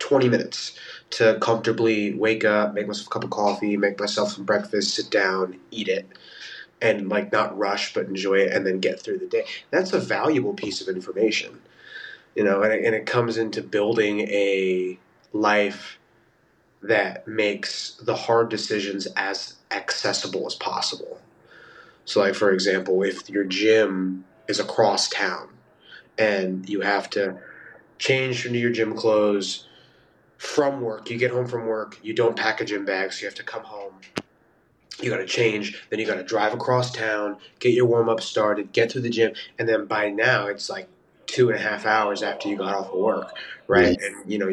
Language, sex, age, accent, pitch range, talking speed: English, male, 30-49, American, 95-115 Hz, 180 wpm